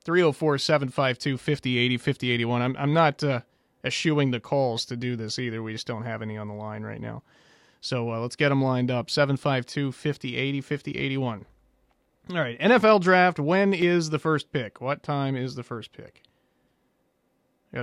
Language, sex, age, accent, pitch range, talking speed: English, male, 30-49, American, 120-145 Hz, 160 wpm